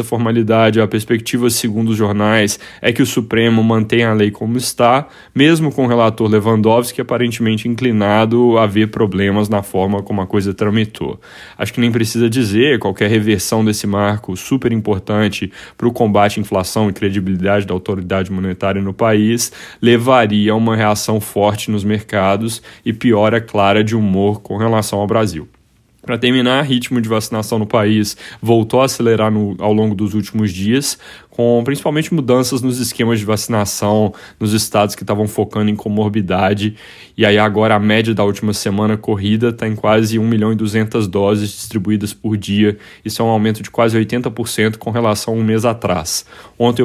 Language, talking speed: Portuguese, 175 wpm